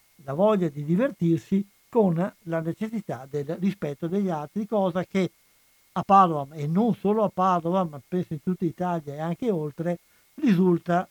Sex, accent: male, native